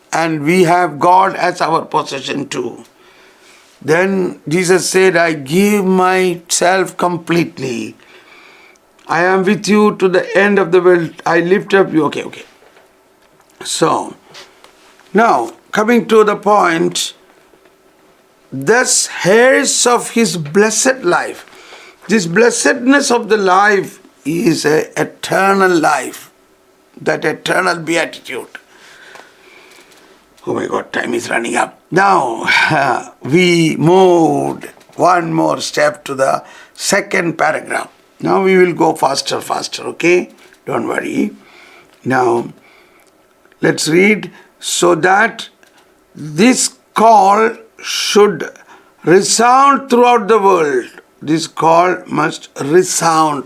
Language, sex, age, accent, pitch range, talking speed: English, male, 60-79, Indian, 175-240 Hz, 110 wpm